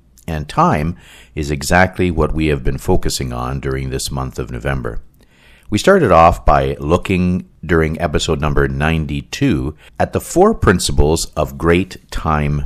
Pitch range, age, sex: 75-90 Hz, 50-69, male